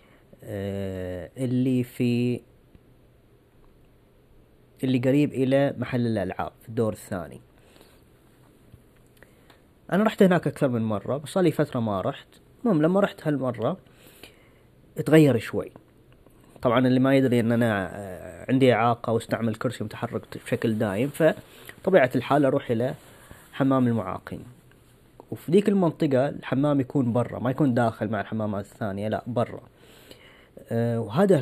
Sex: female